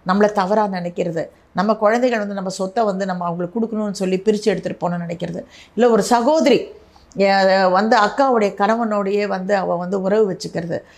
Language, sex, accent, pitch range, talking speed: Tamil, female, native, 190-245 Hz, 155 wpm